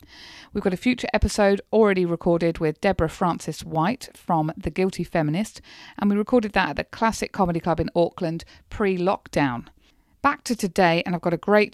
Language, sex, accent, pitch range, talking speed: English, female, British, 170-205 Hz, 180 wpm